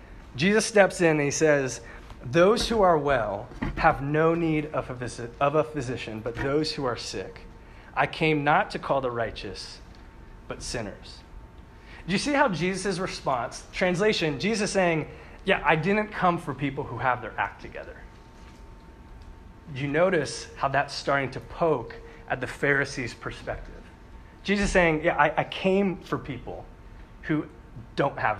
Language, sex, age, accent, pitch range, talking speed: English, male, 30-49, American, 115-170 Hz, 155 wpm